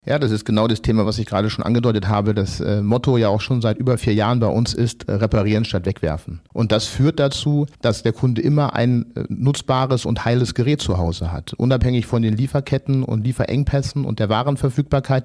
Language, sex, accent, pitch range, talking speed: German, male, German, 105-130 Hz, 215 wpm